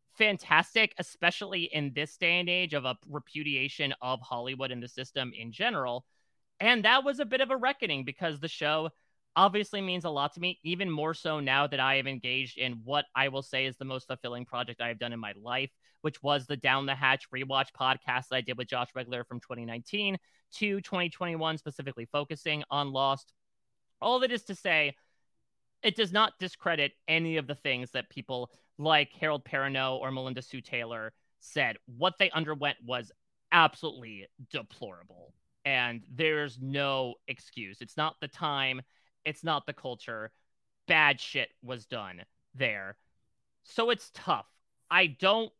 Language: English